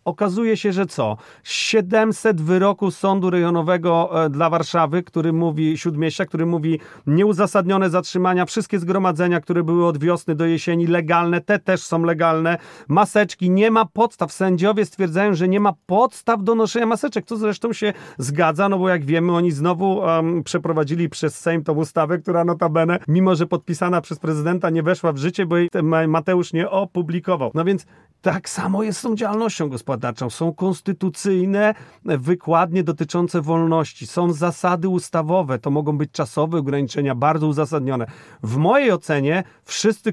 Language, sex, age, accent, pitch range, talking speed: Polish, male, 40-59, native, 160-190 Hz, 155 wpm